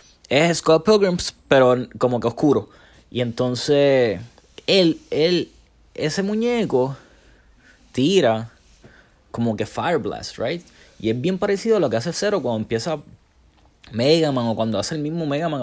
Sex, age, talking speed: male, 20-39, 140 wpm